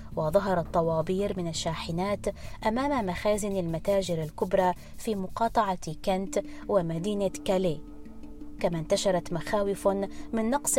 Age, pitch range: 20-39, 170-205 Hz